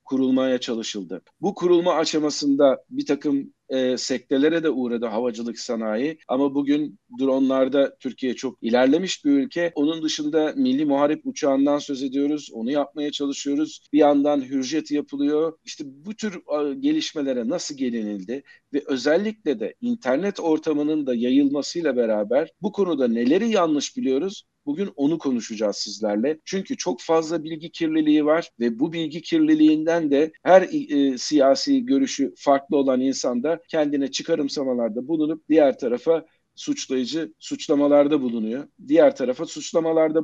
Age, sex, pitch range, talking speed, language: 50-69, male, 135-185 Hz, 130 wpm, Turkish